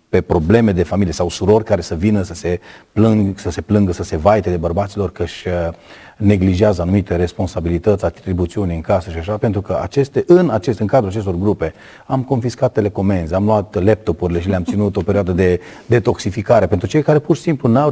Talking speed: 200 wpm